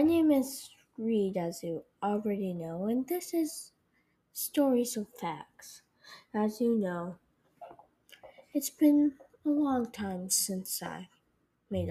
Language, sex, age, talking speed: English, female, 10-29, 125 wpm